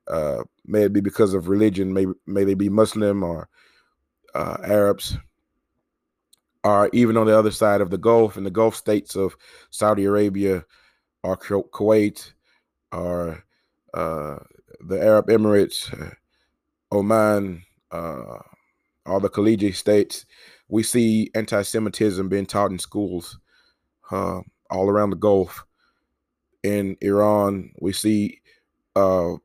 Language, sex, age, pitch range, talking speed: English, male, 20-39, 95-110 Hz, 125 wpm